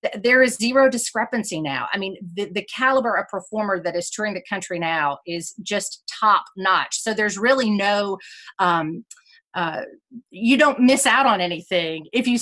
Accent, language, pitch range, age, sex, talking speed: American, English, 180-235 Hz, 40-59, female, 175 wpm